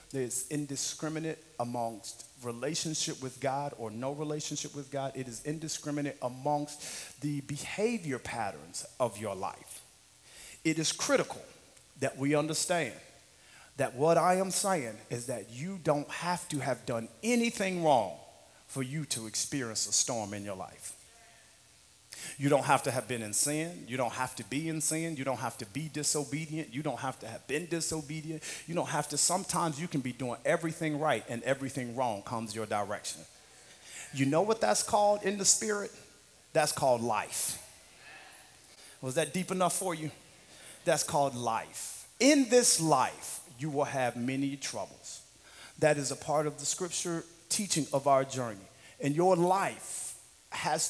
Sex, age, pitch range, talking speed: male, 40-59, 130-160 Hz, 165 wpm